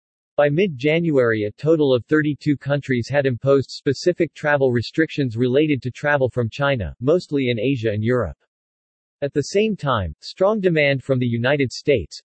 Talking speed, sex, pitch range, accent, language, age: 155 wpm, male, 125-150 Hz, American, English, 40-59